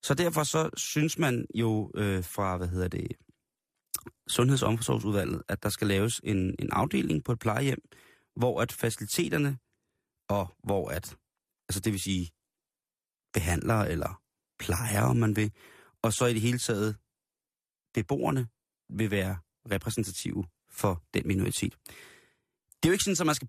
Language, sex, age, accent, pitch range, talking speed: Danish, male, 30-49, native, 100-130 Hz, 150 wpm